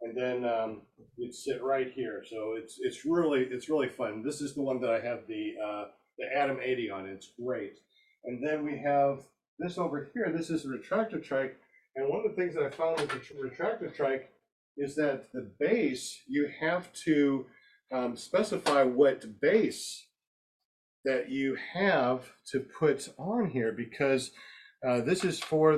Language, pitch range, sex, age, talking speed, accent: English, 125-165 Hz, male, 50-69, 180 wpm, American